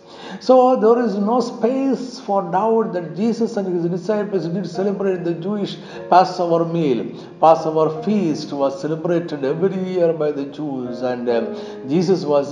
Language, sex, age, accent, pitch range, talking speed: Malayalam, male, 60-79, native, 140-190 Hz, 150 wpm